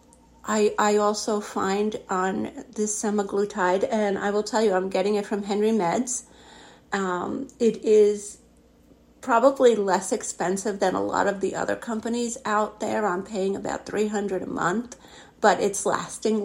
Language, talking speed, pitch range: English, 155 wpm, 195-225 Hz